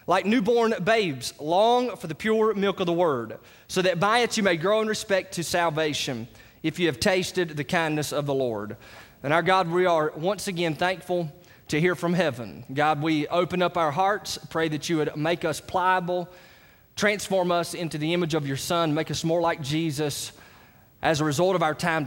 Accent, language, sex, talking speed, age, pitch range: American, English, male, 205 wpm, 20-39, 145-185 Hz